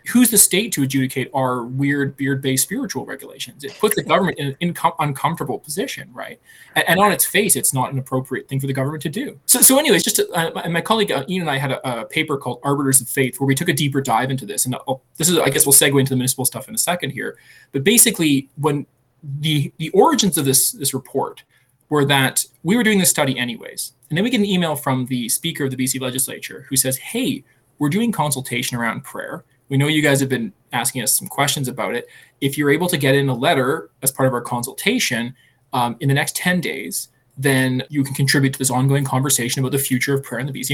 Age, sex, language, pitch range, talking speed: 20-39, male, English, 130-165 Hz, 240 wpm